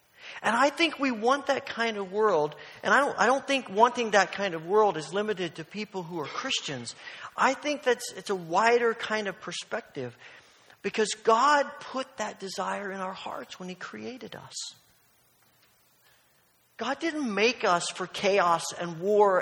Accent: American